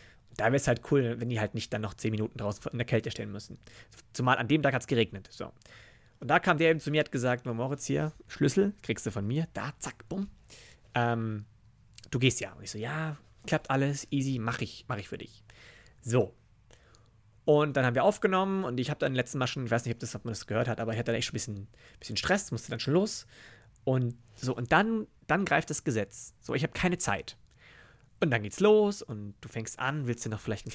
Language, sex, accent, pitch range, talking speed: German, male, German, 115-145 Hz, 240 wpm